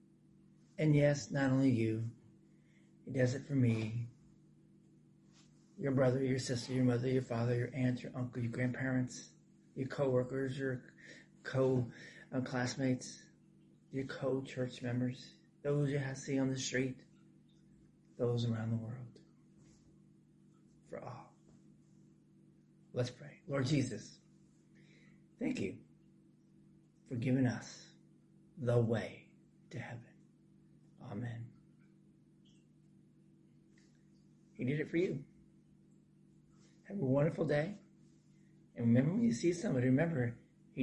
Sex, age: male, 40-59